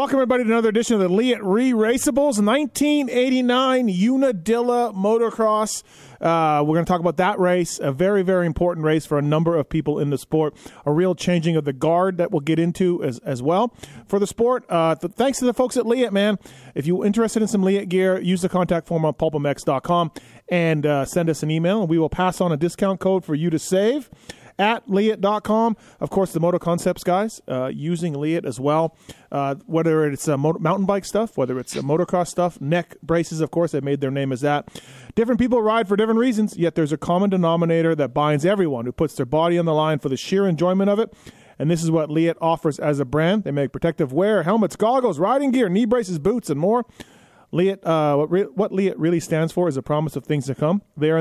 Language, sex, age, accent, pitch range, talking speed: English, male, 30-49, American, 155-205 Hz, 225 wpm